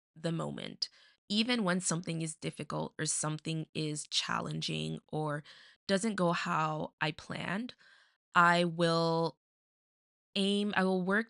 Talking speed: 120 wpm